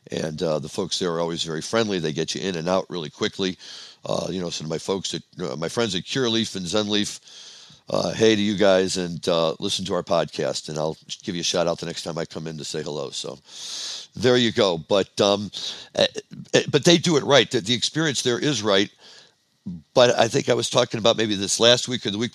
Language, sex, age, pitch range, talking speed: English, male, 60-79, 100-125 Hz, 240 wpm